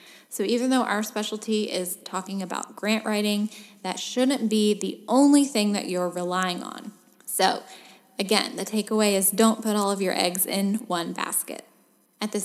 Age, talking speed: 10-29, 175 wpm